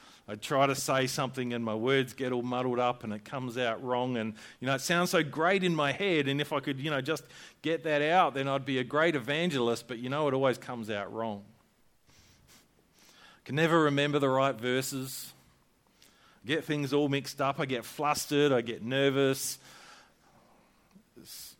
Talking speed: 195 wpm